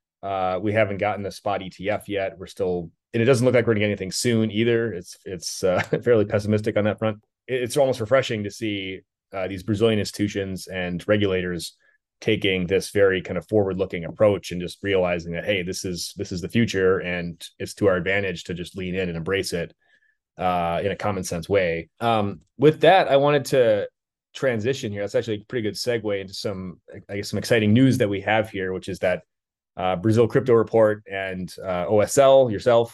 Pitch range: 95-115 Hz